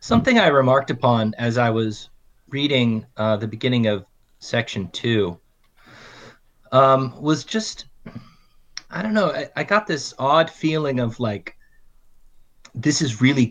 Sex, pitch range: male, 105-135 Hz